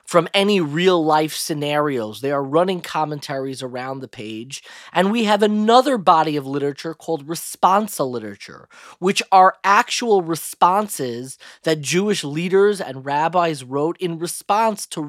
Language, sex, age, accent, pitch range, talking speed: English, male, 30-49, American, 150-210 Hz, 135 wpm